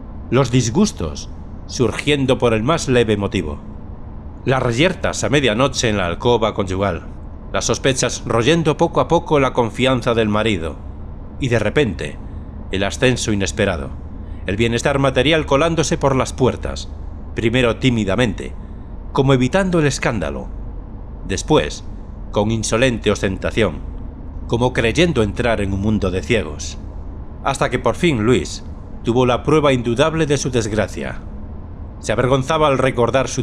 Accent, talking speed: Spanish, 135 wpm